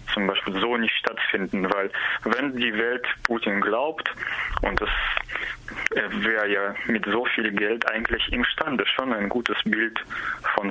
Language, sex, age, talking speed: German, male, 20-39, 145 wpm